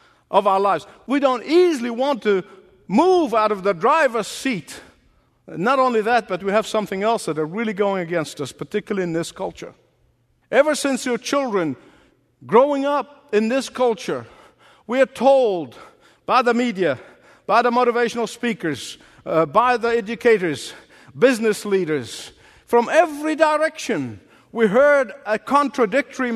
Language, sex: English, male